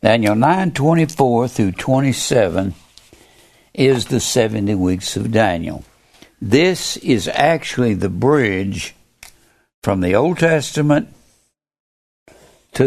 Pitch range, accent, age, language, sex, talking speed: 100-135 Hz, American, 60-79, English, male, 105 wpm